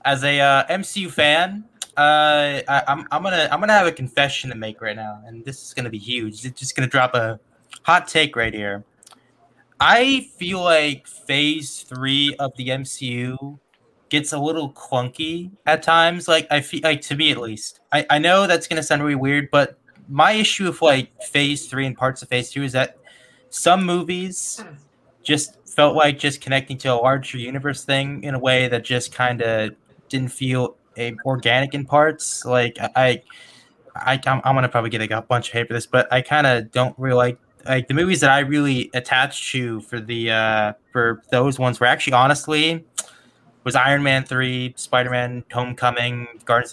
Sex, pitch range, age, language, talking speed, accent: male, 120-145 Hz, 20-39, English, 190 wpm, American